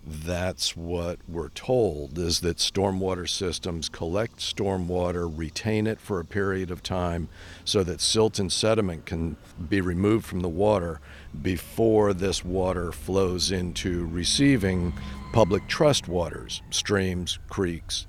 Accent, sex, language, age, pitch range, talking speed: American, male, English, 50-69, 85-100 Hz, 130 wpm